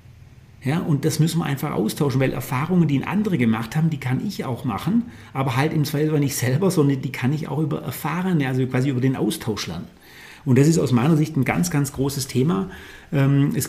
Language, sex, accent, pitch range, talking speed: German, male, German, 130-155 Hz, 225 wpm